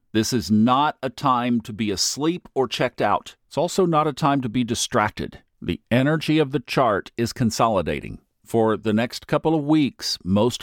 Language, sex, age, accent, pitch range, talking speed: English, male, 50-69, American, 105-140 Hz, 185 wpm